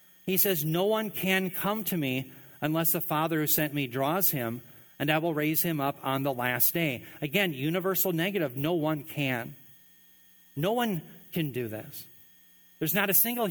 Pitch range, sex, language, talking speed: 150-185 Hz, male, English, 180 wpm